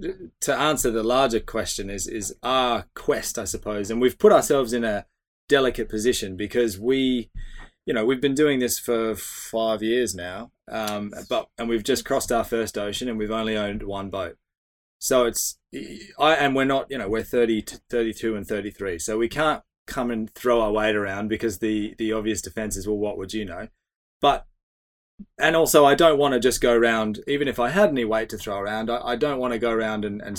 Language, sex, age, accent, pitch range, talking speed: English, male, 20-39, Australian, 105-125 Hz, 210 wpm